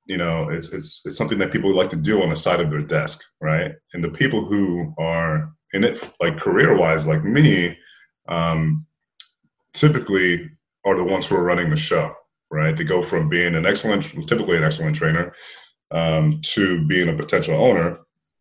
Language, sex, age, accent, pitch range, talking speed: English, male, 30-49, American, 80-130 Hz, 185 wpm